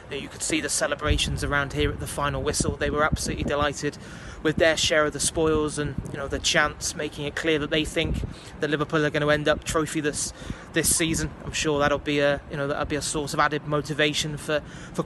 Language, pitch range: English, 145-160 Hz